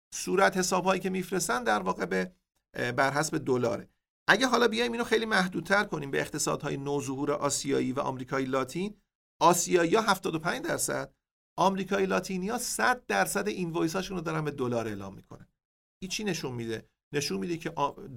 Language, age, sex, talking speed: Persian, 50-69, male, 150 wpm